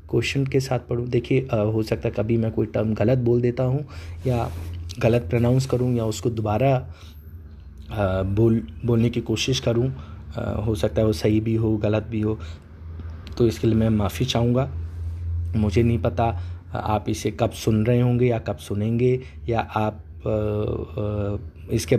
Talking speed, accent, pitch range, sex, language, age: 170 wpm, native, 105-135 Hz, male, Hindi, 20-39